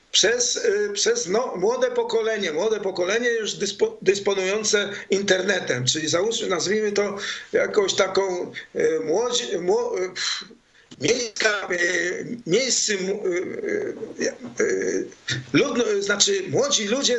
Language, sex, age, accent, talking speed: Polish, male, 50-69, native, 100 wpm